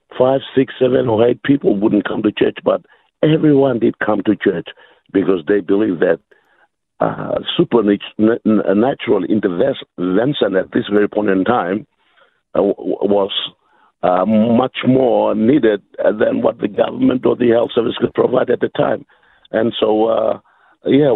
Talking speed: 145 wpm